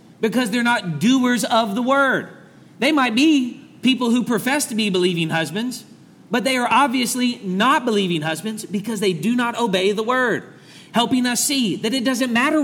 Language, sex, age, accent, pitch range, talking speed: English, male, 40-59, American, 165-235 Hz, 180 wpm